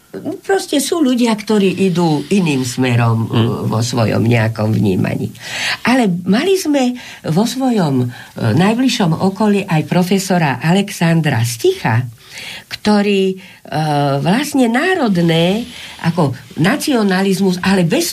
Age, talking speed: 50-69, 95 wpm